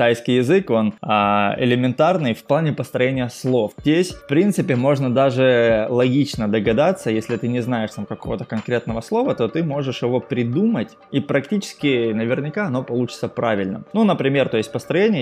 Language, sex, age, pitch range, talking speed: Russian, male, 20-39, 115-140 Hz, 160 wpm